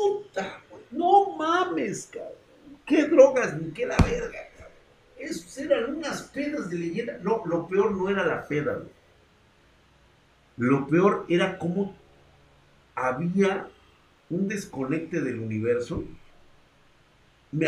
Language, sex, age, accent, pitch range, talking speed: Spanish, male, 50-69, Mexican, 105-170 Hz, 110 wpm